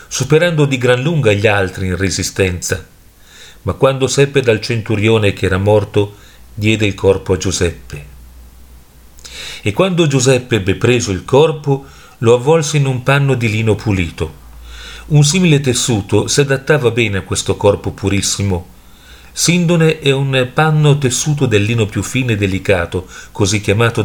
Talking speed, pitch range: 145 wpm, 100-130 Hz